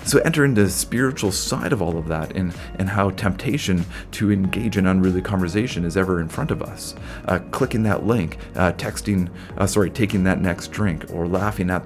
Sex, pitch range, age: male, 90-105 Hz, 30-49